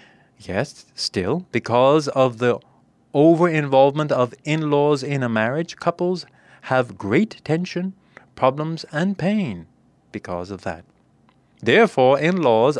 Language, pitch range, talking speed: English, 105-155 Hz, 110 wpm